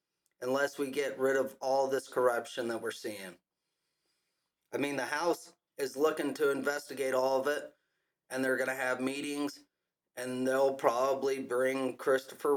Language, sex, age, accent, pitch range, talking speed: English, male, 30-49, American, 125-145 Hz, 160 wpm